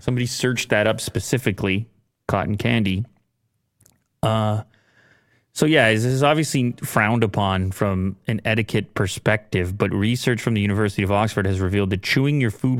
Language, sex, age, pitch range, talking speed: English, male, 30-49, 100-125 Hz, 150 wpm